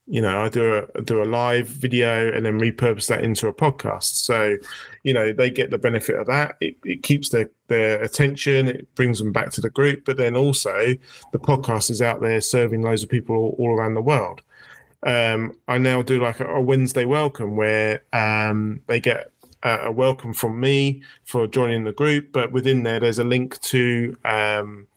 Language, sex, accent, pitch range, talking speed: English, male, British, 115-135 Hz, 200 wpm